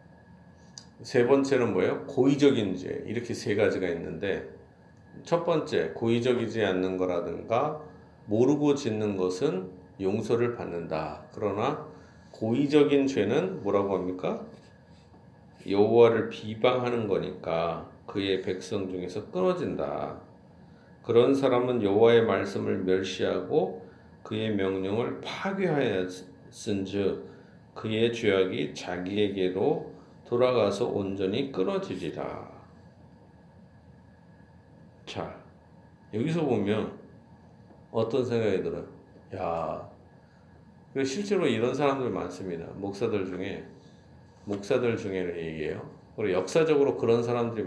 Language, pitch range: Korean, 95-125 Hz